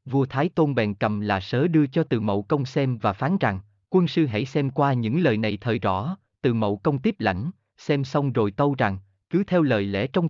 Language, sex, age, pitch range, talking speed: Vietnamese, male, 20-39, 110-160 Hz, 240 wpm